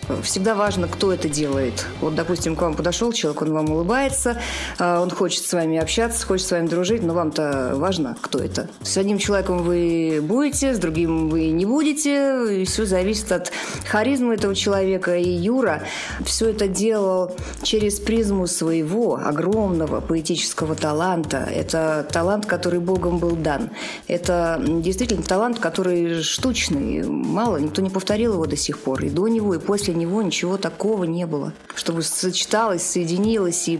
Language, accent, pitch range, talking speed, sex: Russian, native, 160-200 Hz, 155 wpm, female